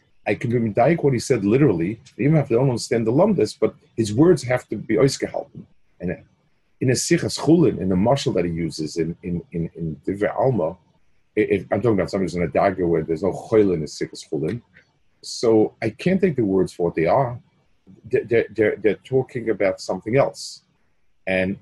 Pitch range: 90-135 Hz